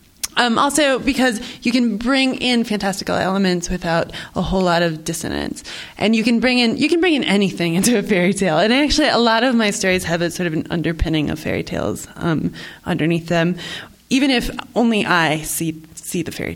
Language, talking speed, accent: English, 205 wpm, American